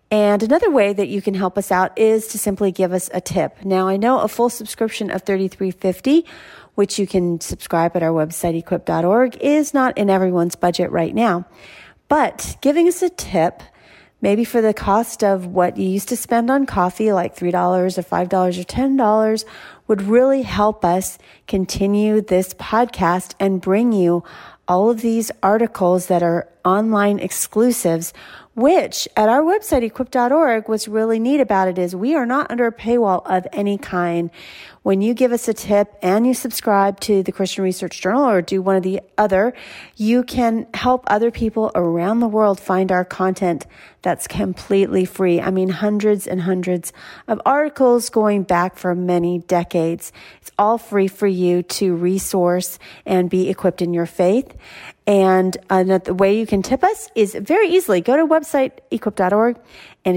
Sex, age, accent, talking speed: female, 40-59, American, 175 wpm